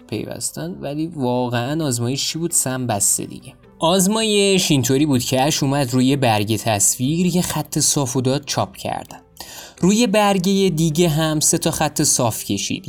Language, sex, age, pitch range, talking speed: Persian, male, 20-39, 115-165 Hz, 150 wpm